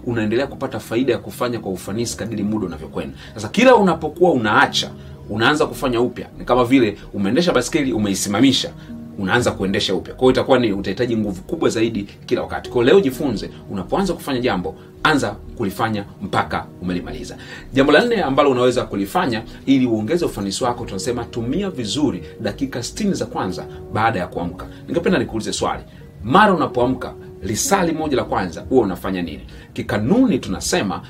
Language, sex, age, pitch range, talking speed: Swahili, male, 30-49, 95-125 Hz, 150 wpm